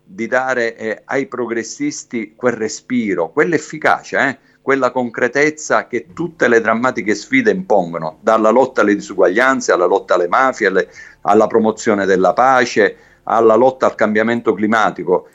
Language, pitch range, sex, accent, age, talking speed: Italian, 110-130 Hz, male, native, 50-69, 130 wpm